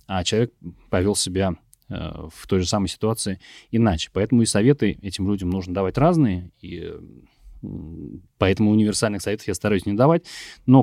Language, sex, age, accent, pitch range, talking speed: Russian, male, 30-49, native, 85-110 Hz, 160 wpm